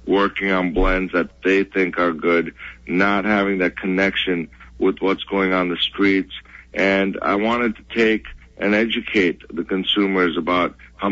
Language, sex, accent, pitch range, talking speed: English, male, American, 90-105 Hz, 155 wpm